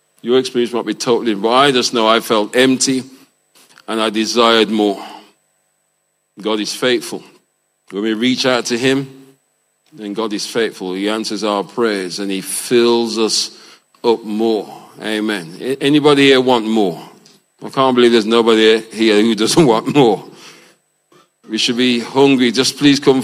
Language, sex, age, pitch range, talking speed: English, male, 40-59, 105-120 Hz, 160 wpm